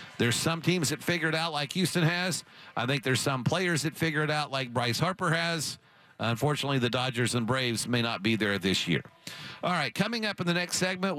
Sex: male